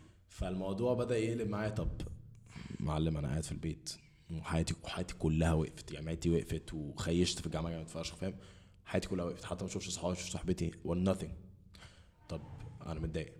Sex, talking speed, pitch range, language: male, 150 wpm, 85-110 Hz, Arabic